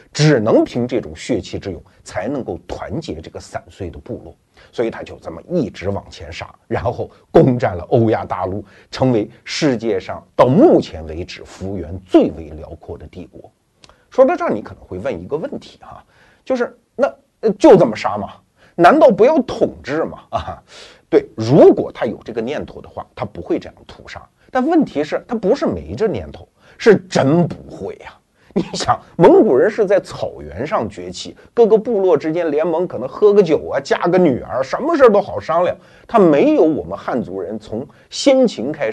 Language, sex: Chinese, male